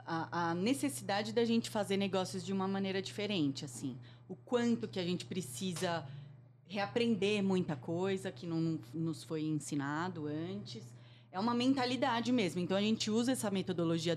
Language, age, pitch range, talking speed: Portuguese, 30-49, 155-205 Hz, 155 wpm